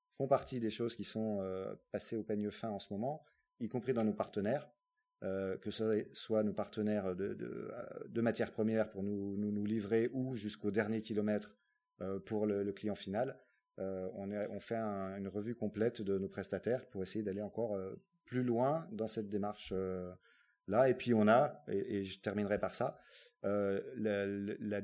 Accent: French